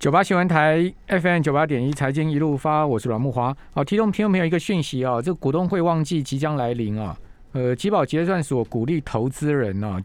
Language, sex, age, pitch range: Chinese, male, 50-69, 110-150 Hz